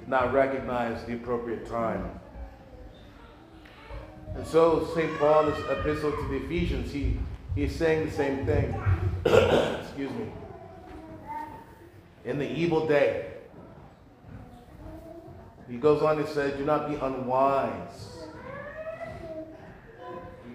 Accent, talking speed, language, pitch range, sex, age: American, 100 wpm, English, 135-160 Hz, male, 40-59